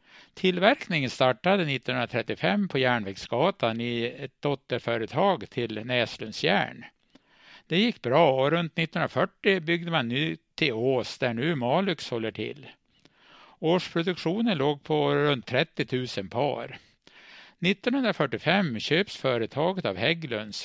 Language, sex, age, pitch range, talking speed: Swedish, male, 60-79, 120-170 Hz, 110 wpm